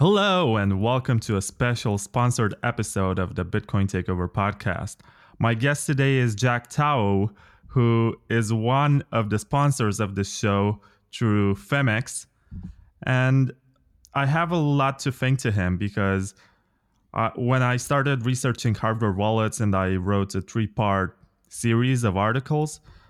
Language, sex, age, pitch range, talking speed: English, male, 20-39, 100-125 Hz, 140 wpm